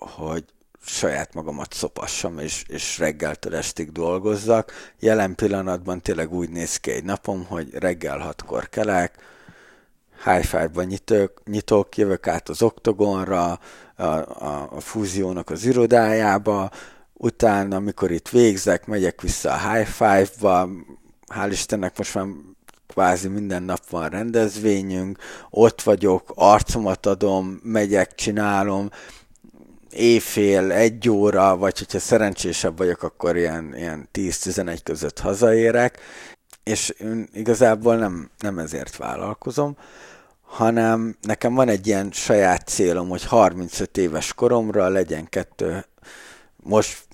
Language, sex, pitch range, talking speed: Hungarian, male, 90-110 Hz, 115 wpm